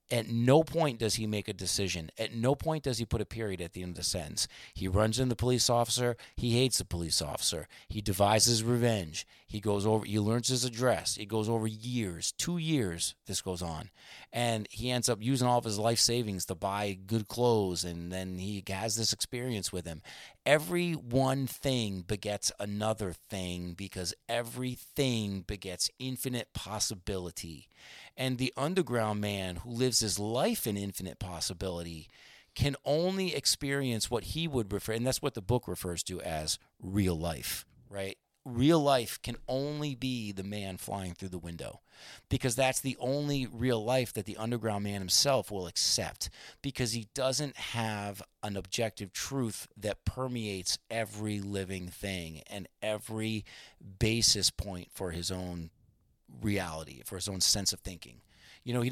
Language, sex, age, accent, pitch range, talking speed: English, male, 30-49, American, 95-120 Hz, 170 wpm